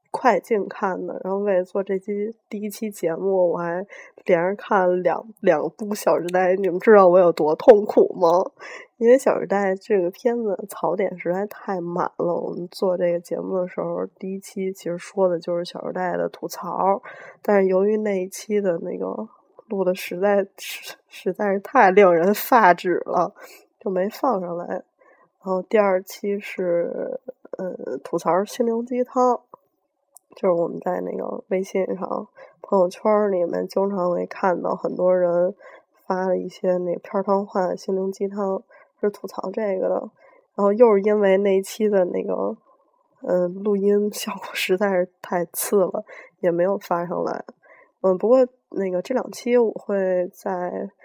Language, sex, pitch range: Chinese, female, 180-220 Hz